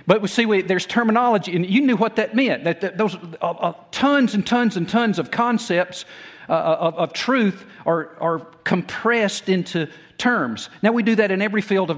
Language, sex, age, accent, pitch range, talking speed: English, male, 50-69, American, 160-200 Hz, 205 wpm